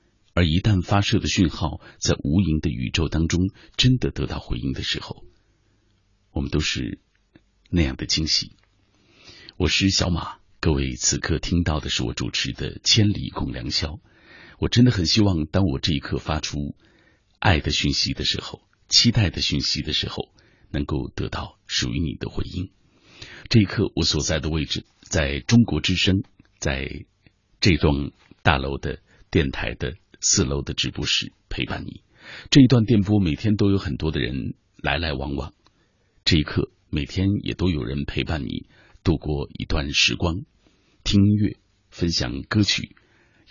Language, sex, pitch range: Chinese, male, 75-105 Hz